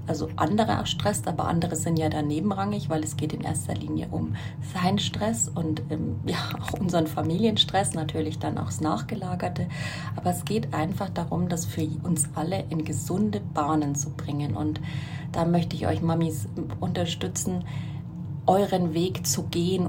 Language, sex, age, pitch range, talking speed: German, female, 30-49, 140-175 Hz, 165 wpm